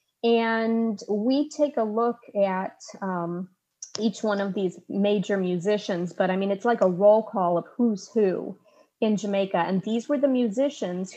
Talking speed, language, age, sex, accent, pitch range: 165 wpm, English, 30-49, female, American, 190-240 Hz